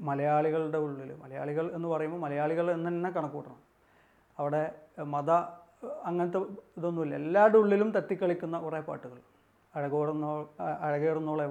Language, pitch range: Malayalam, 145-175 Hz